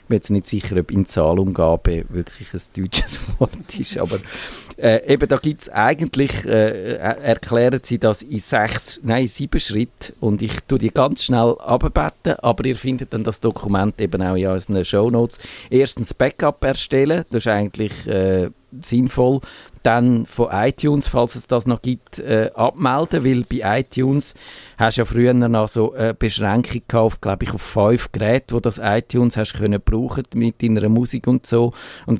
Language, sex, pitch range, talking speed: German, male, 100-125 Hz, 175 wpm